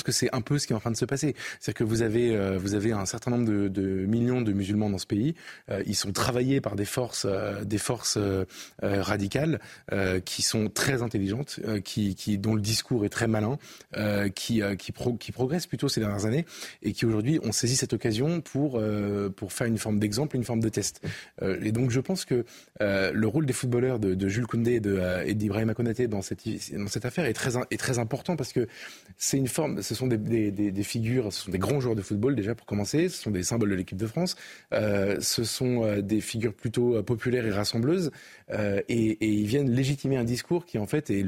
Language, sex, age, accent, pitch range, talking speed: French, male, 20-39, French, 105-130 Hz, 245 wpm